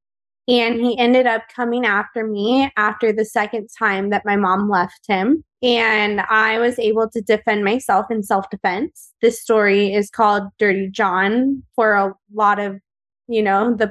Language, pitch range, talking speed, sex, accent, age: English, 205-240 Hz, 165 wpm, female, American, 20-39